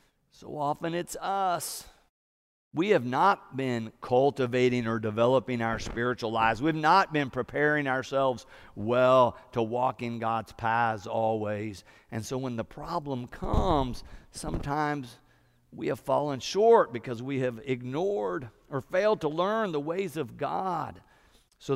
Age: 50-69